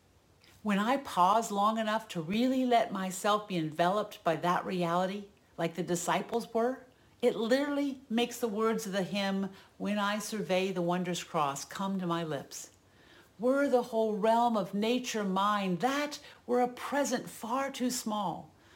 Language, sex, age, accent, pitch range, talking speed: English, female, 50-69, American, 175-250 Hz, 160 wpm